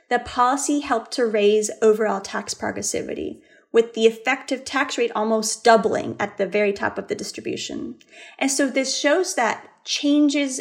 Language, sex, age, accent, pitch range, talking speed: English, female, 30-49, American, 215-270 Hz, 160 wpm